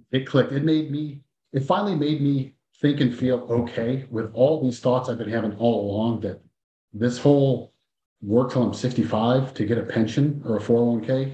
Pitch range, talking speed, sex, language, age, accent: 110-135 Hz, 190 wpm, male, English, 40-59, American